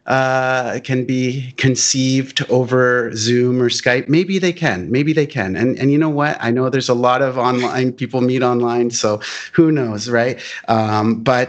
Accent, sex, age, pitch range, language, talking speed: American, male, 30-49, 100-130 Hz, English, 185 wpm